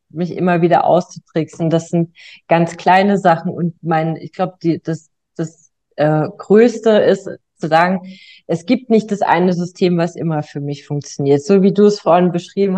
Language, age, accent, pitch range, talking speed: German, 30-49, German, 150-180 Hz, 175 wpm